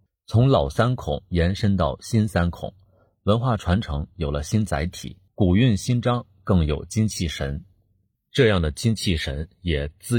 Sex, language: male, Chinese